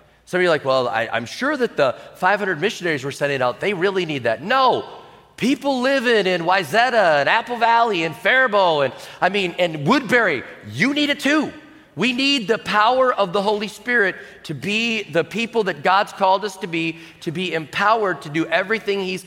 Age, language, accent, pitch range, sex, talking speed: 40-59, English, American, 140-190 Hz, male, 195 wpm